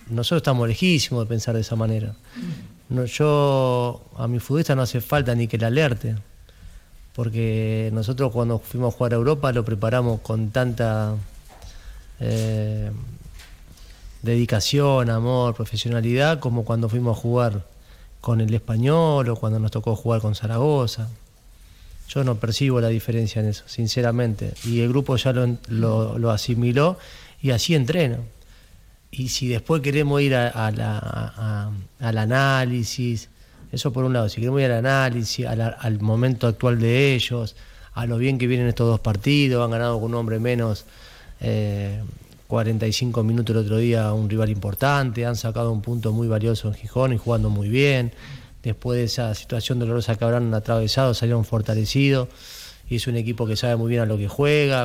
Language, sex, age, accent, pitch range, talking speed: Spanish, male, 40-59, Argentinian, 110-125 Hz, 170 wpm